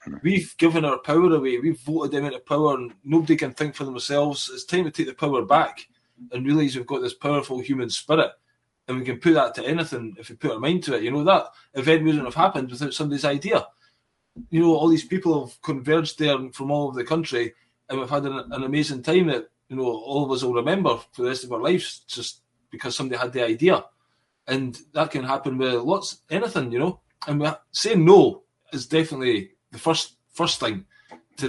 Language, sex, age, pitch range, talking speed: English, male, 20-39, 130-160 Hz, 215 wpm